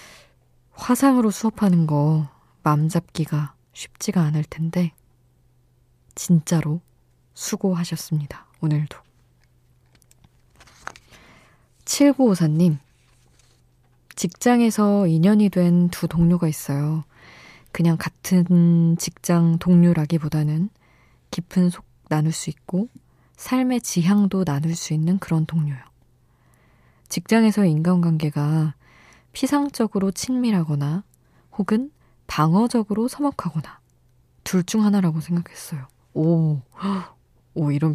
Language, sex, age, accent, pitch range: Korean, female, 20-39, native, 145-190 Hz